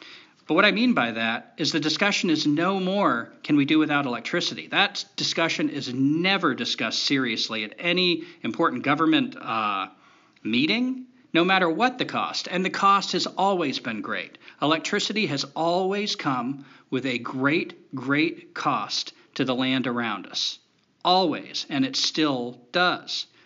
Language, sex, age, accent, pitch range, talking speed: English, male, 40-59, American, 125-170 Hz, 155 wpm